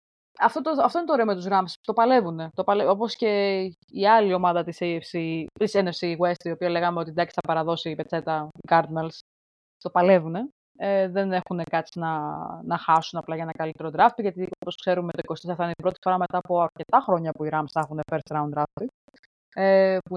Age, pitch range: 20-39, 165-225 Hz